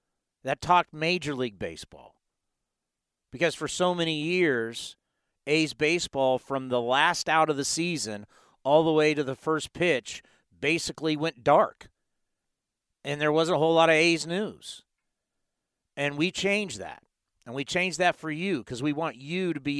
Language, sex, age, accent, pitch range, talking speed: English, male, 50-69, American, 135-165 Hz, 165 wpm